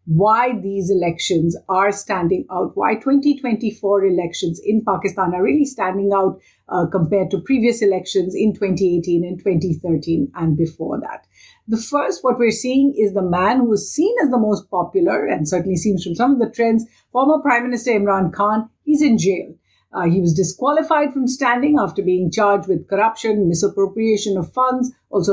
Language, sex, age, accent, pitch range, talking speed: English, female, 50-69, Indian, 190-245 Hz, 175 wpm